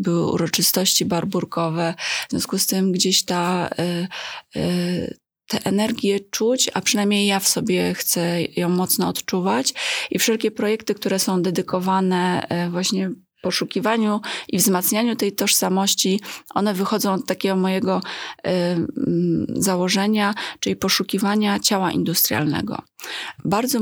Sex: female